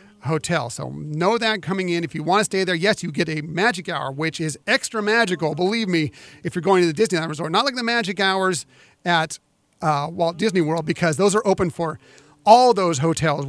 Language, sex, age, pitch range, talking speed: English, male, 40-59, 155-190 Hz, 220 wpm